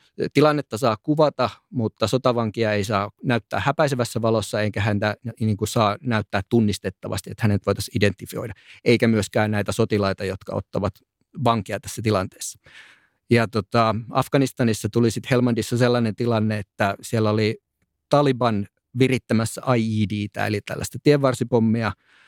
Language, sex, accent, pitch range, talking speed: Finnish, male, native, 110-130 Hz, 125 wpm